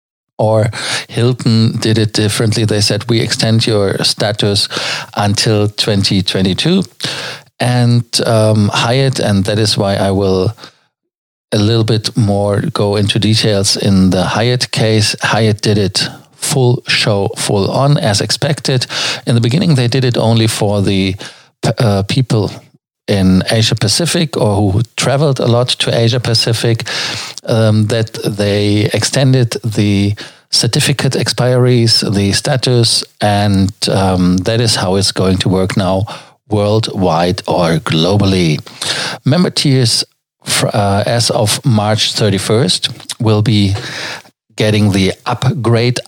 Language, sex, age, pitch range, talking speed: German, male, 50-69, 105-125 Hz, 130 wpm